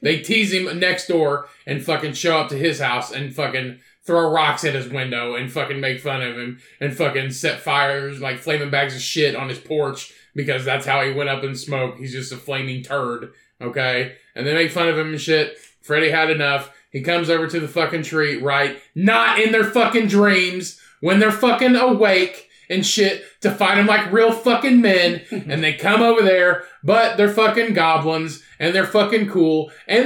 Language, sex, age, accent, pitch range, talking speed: English, male, 20-39, American, 145-205 Hz, 205 wpm